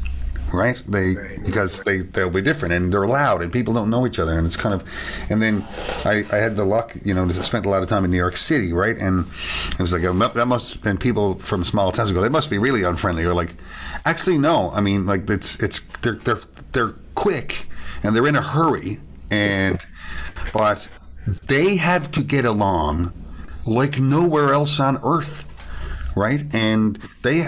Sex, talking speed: male, 195 wpm